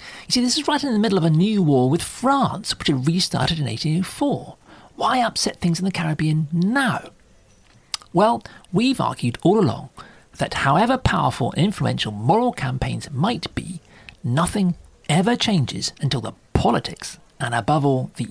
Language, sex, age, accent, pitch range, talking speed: English, male, 40-59, British, 130-185 Hz, 165 wpm